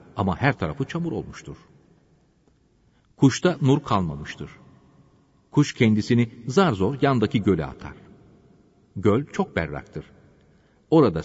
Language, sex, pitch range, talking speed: Turkish, male, 110-165 Hz, 100 wpm